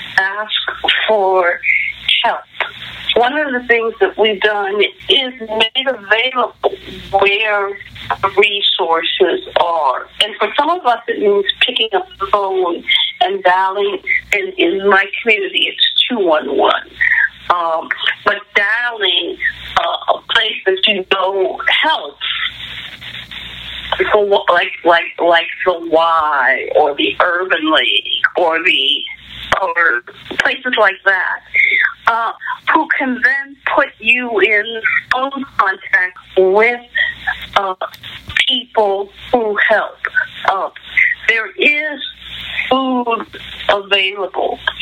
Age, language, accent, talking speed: 50-69, English, American, 110 wpm